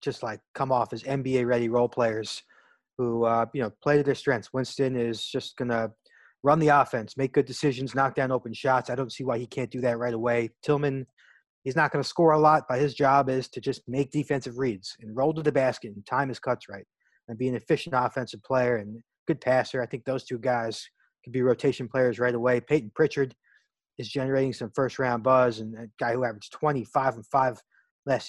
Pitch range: 120-140 Hz